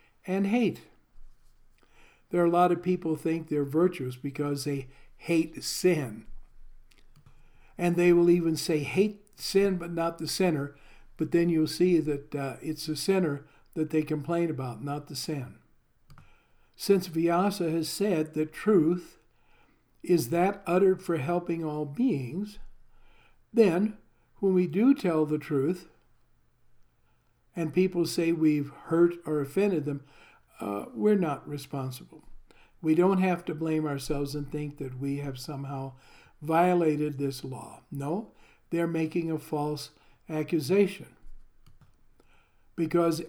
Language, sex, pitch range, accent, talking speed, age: English, male, 145-180 Hz, American, 135 wpm, 60-79